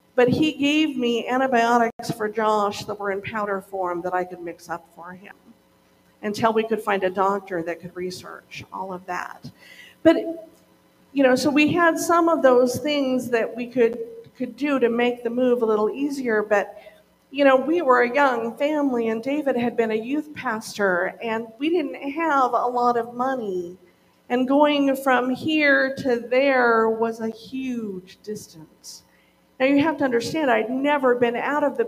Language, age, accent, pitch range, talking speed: English, 50-69, American, 205-270 Hz, 185 wpm